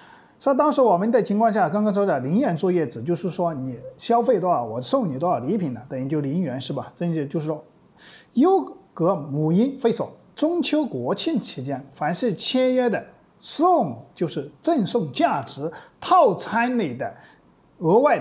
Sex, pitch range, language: male, 175-265 Hz, Chinese